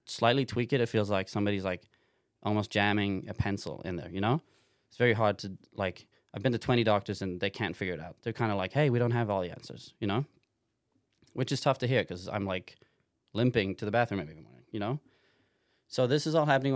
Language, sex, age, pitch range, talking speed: English, male, 20-39, 100-120 Hz, 235 wpm